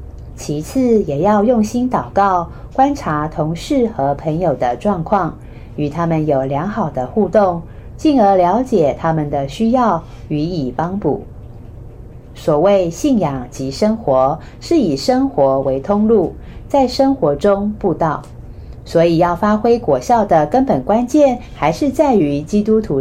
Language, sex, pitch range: Chinese, female, 140-220 Hz